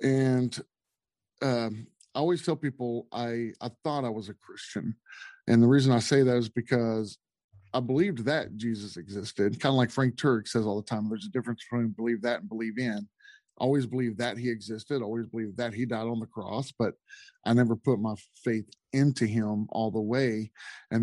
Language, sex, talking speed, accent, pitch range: English, male, 195 wpm, American, 110-135 Hz